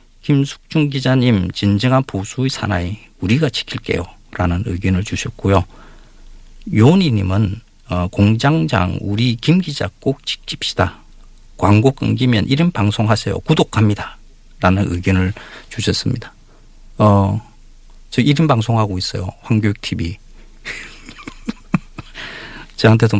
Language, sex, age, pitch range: Korean, male, 50-69, 95-125 Hz